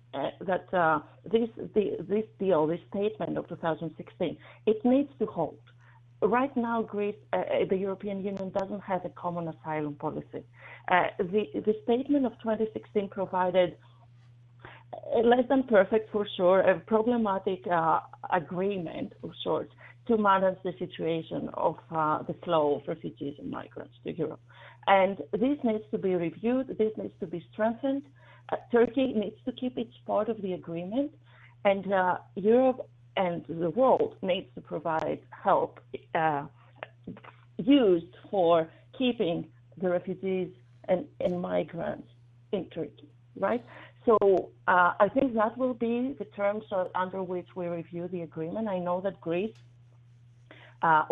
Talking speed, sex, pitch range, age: 140 wpm, female, 160-215 Hz, 40-59